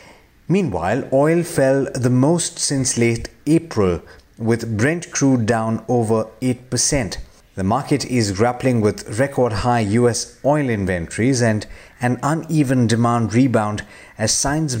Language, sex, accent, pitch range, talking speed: English, male, Indian, 110-135 Hz, 130 wpm